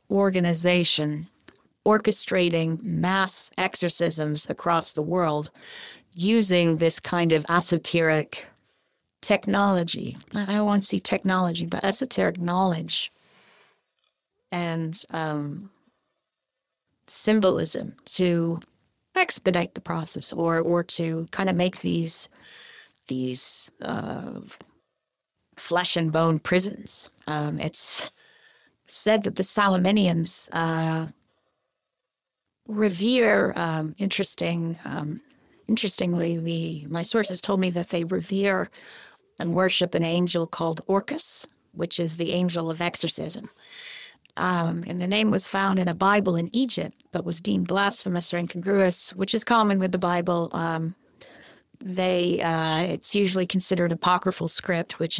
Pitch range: 165-195 Hz